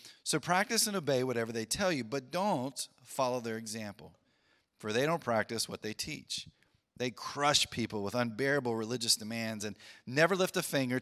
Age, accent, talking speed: 30-49, American, 175 wpm